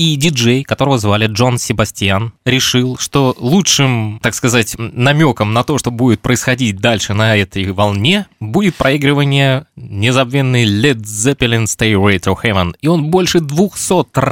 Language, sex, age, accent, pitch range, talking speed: Russian, male, 20-39, native, 110-145 Hz, 140 wpm